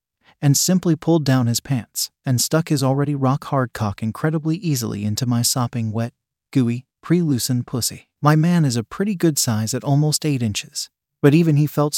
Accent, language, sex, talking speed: American, English, male, 180 wpm